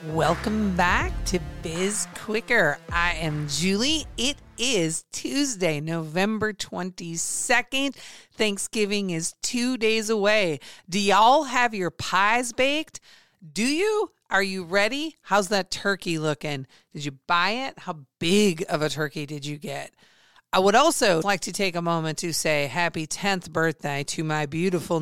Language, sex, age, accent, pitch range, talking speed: English, female, 40-59, American, 150-195 Hz, 145 wpm